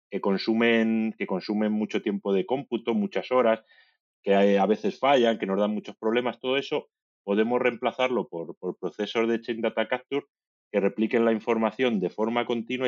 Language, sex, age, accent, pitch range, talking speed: Spanish, male, 30-49, Spanish, 100-125 Hz, 170 wpm